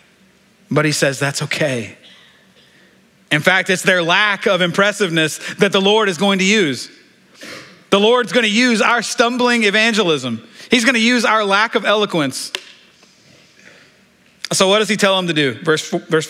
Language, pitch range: English, 160-210 Hz